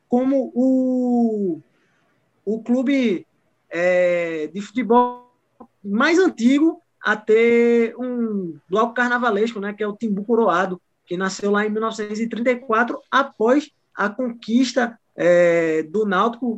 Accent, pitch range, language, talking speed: Brazilian, 195-230 Hz, Portuguese, 110 wpm